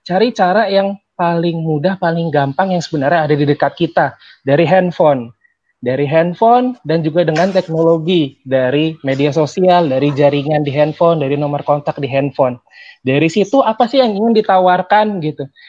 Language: Indonesian